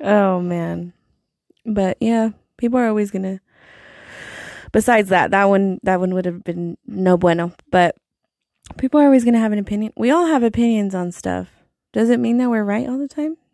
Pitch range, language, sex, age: 185-220 Hz, English, female, 20-39